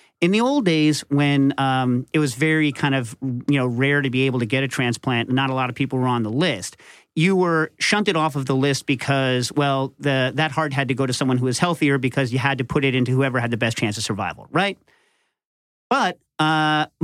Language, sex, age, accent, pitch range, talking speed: English, male, 40-59, American, 130-155 Hz, 235 wpm